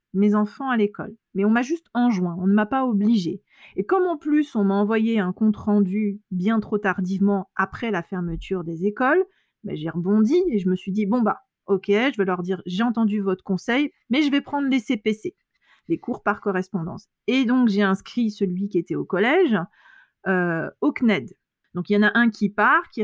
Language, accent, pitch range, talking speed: French, French, 190-250 Hz, 215 wpm